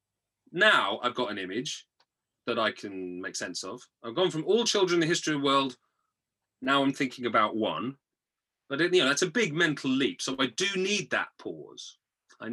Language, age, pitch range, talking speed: English, 30-49, 120-180 Hz, 190 wpm